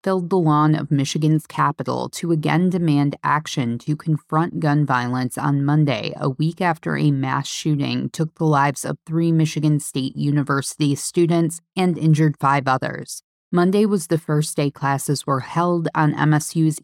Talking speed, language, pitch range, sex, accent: 160 wpm, English, 145-170 Hz, female, American